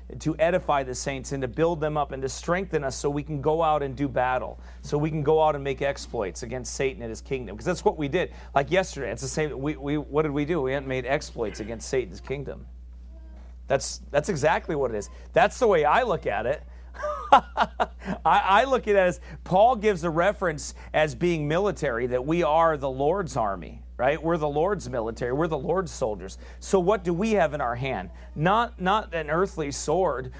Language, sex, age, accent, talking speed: English, male, 40-59, American, 220 wpm